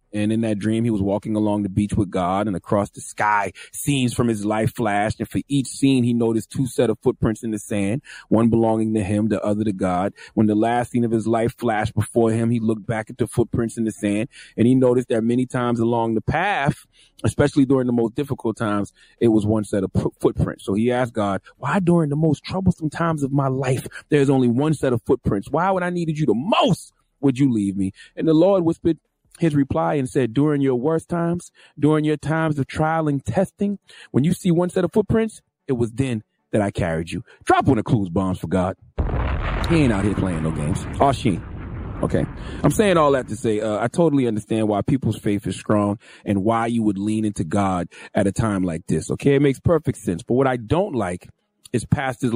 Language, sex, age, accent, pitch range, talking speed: English, male, 30-49, American, 105-140 Hz, 235 wpm